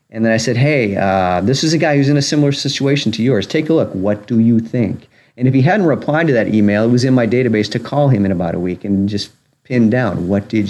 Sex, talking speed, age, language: male, 280 wpm, 40-59, English